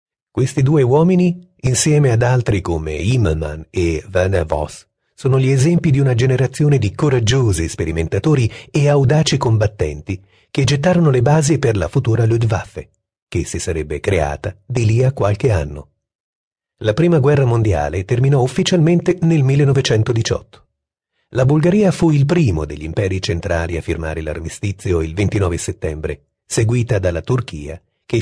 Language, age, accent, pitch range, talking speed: Italian, 40-59, native, 95-145 Hz, 140 wpm